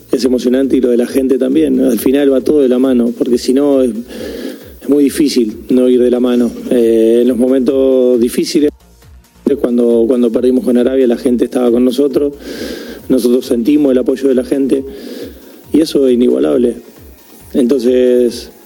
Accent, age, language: Argentinian, 40-59, Spanish